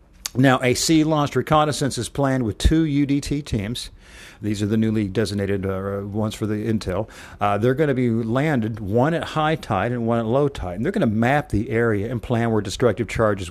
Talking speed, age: 215 wpm, 50-69